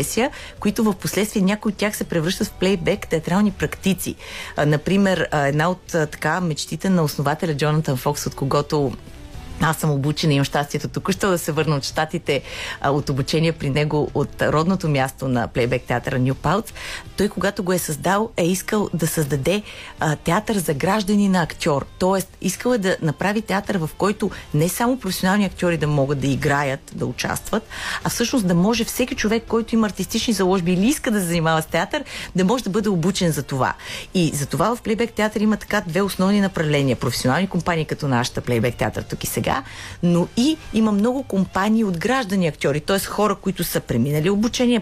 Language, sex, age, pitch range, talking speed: Bulgarian, female, 30-49, 150-205 Hz, 175 wpm